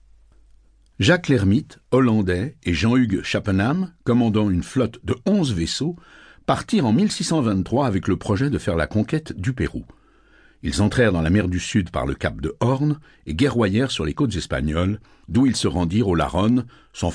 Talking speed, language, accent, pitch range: 170 wpm, French, French, 90-130 Hz